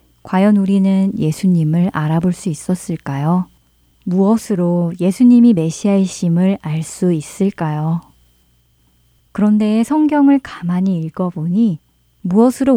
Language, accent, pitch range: Korean, native, 155-210 Hz